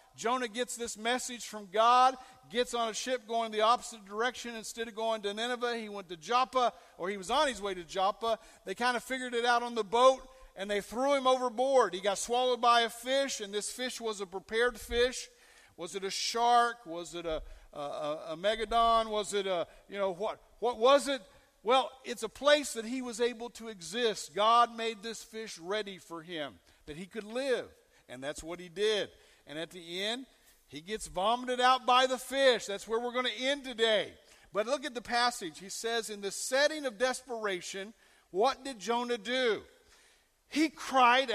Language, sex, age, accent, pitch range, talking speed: English, male, 50-69, American, 210-255 Hz, 200 wpm